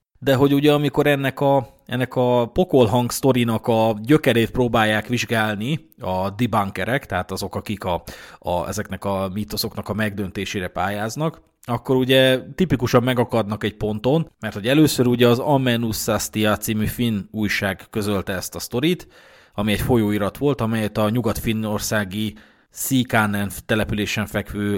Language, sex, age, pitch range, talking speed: Hungarian, male, 30-49, 100-130 Hz, 135 wpm